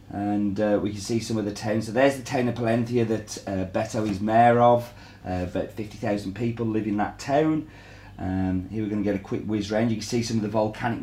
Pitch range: 100-125 Hz